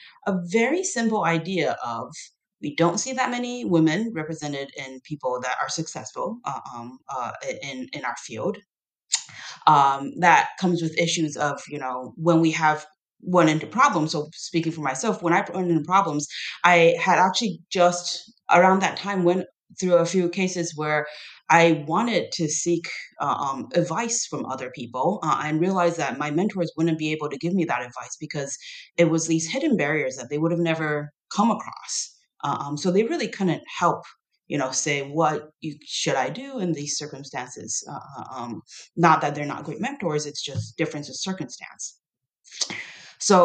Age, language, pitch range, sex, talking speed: 30-49, English, 150-180 Hz, female, 175 wpm